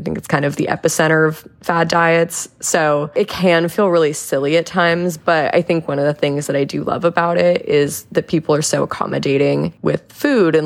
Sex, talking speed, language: female, 225 wpm, English